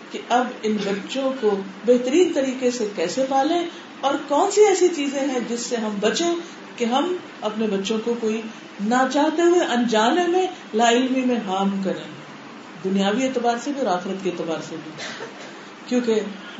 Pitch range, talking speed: 190-270 Hz, 170 wpm